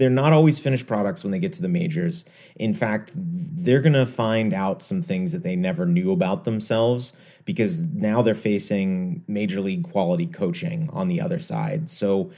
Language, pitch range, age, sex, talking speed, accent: English, 110-175 Hz, 30-49, male, 190 wpm, American